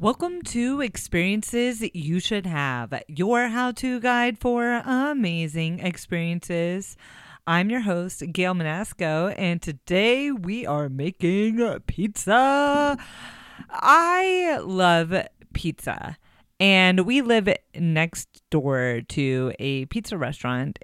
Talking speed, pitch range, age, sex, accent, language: 100 wpm, 155-230 Hz, 30-49, female, American, English